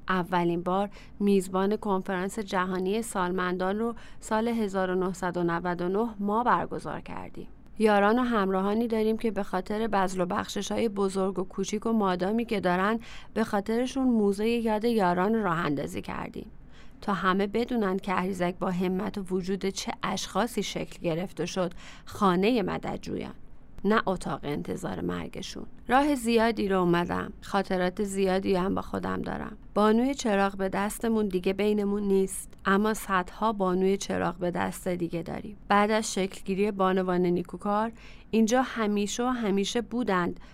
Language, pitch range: English, 185-215 Hz